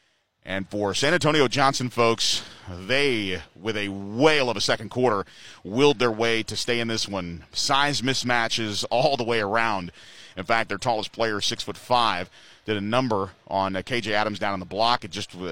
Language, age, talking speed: English, 30-49, 185 wpm